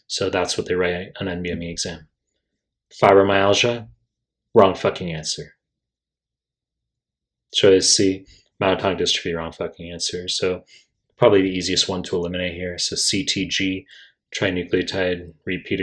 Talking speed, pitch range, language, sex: 120 wpm, 90-100 Hz, English, male